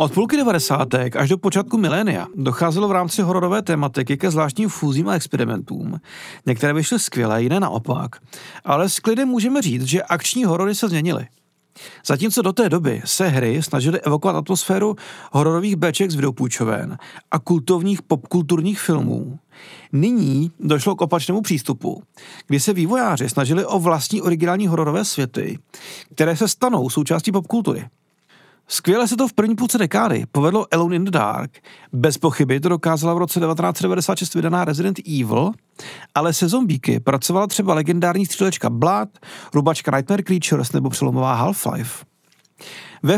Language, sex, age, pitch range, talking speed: Czech, male, 40-59, 145-195 Hz, 145 wpm